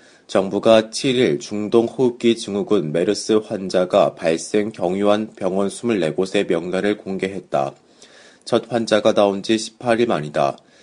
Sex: male